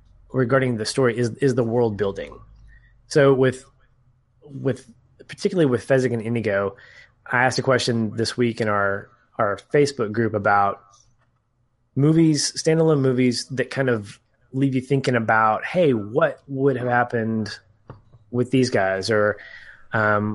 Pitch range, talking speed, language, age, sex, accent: 110-130 Hz, 140 wpm, English, 20-39, male, American